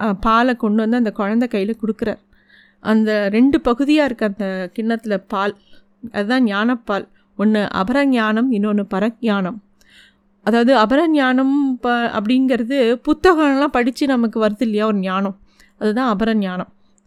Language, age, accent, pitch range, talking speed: Tamil, 30-49, native, 210-260 Hz, 120 wpm